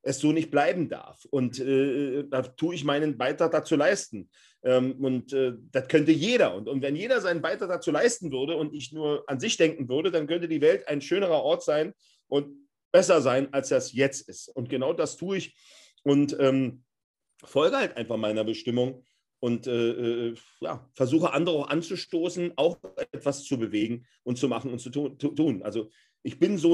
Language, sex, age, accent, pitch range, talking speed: German, male, 40-59, German, 135-175 Hz, 185 wpm